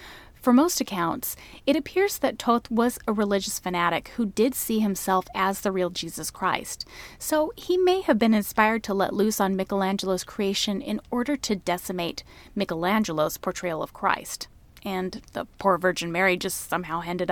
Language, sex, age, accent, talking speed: English, female, 30-49, American, 165 wpm